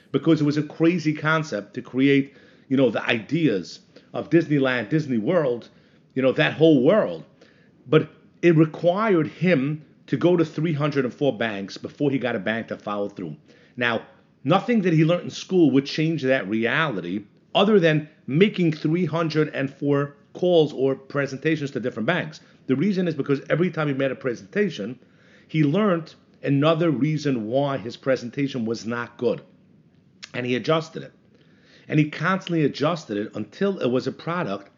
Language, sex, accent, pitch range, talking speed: English, male, American, 135-165 Hz, 160 wpm